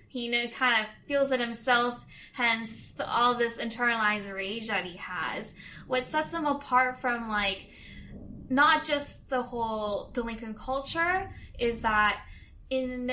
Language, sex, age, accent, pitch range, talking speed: English, female, 10-29, American, 225-270 Hz, 135 wpm